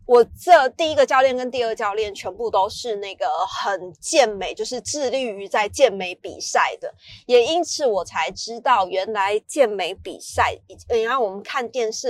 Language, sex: Chinese, female